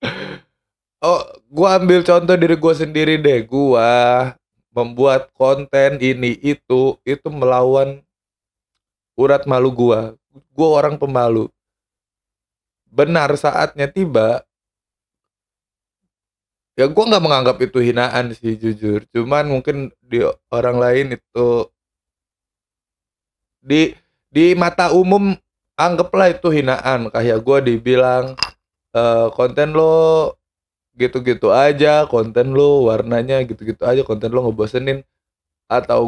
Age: 20-39